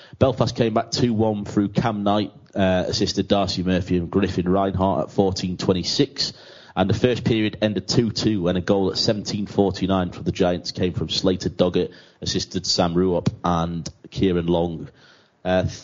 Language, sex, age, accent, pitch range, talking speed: English, male, 30-49, British, 90-105 Hz, 160 wpm